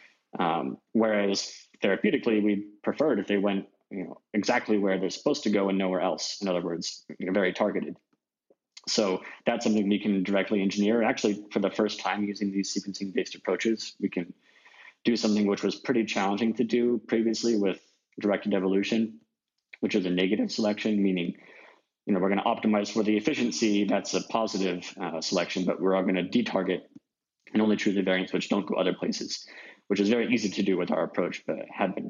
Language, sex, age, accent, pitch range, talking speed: English, male, 20-39, American, 95-110 Hz, 195 wpm